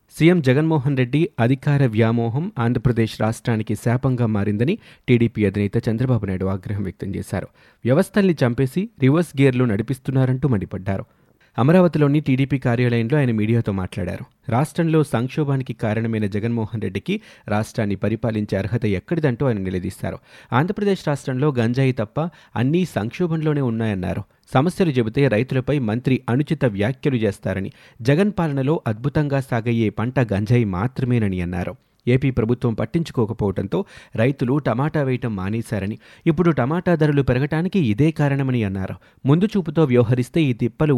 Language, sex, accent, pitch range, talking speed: Telugu, male, native, 110-145 Hz, 115 wpm